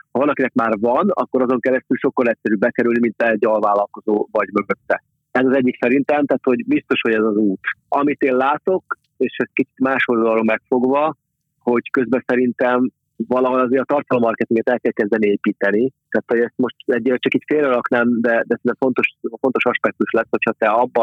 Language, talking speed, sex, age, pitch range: Hungarian, 185 wpm, male, 30-49, 110-130 Hz